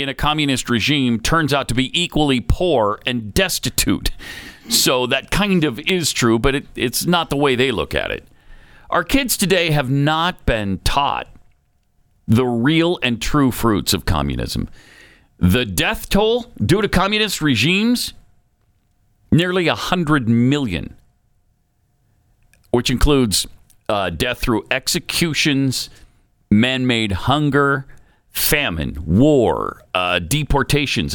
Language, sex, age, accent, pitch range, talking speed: English, male, 50-69, American, 120-175 Hz, 125 wpm